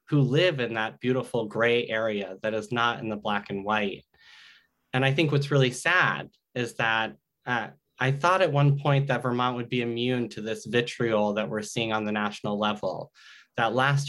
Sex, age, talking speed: male, 20-39, 195 wpm